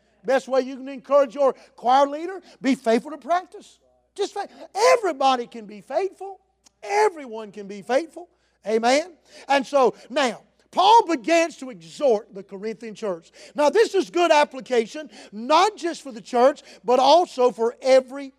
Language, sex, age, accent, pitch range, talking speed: English, male, 50-69, American, 235-310 Hz, 150 wpm